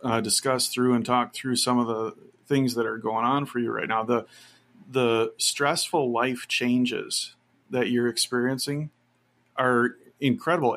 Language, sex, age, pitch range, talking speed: English, male, 40-59, 120-140 Hz, 155 wpm